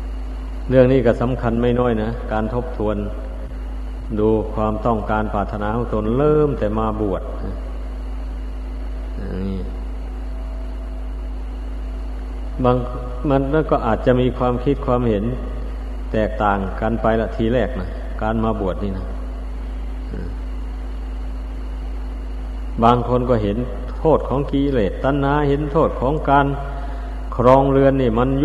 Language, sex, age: Thai, male, 60-79